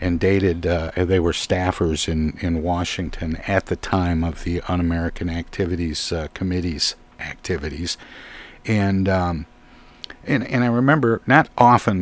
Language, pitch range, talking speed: English, 85-100 Hz, 135 wpm